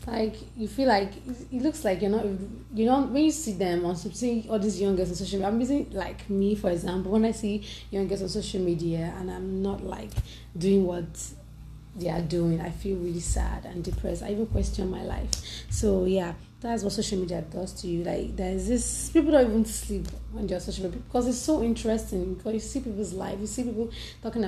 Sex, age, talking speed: female, 20-39, 220 wpm